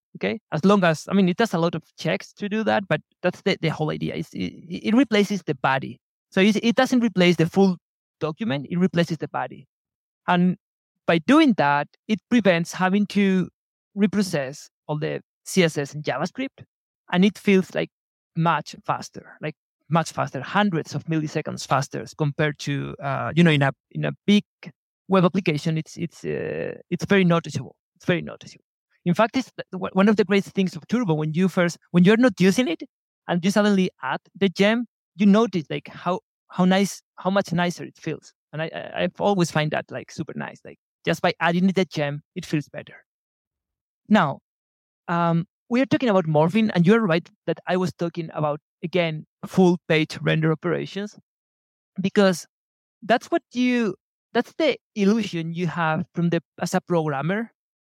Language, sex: English, male